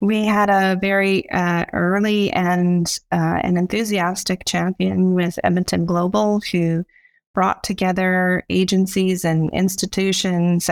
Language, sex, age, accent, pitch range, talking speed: English, female, 30-49, American, 170-195 Hz, 110 wpm